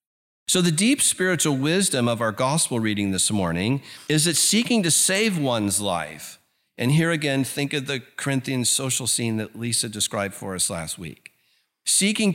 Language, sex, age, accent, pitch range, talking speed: English, male, 50-69, American, 105-150 Hz, 170 wpm